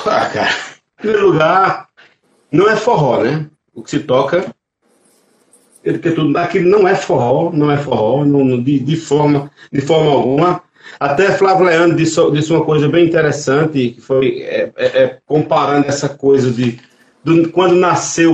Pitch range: 140-195 Hz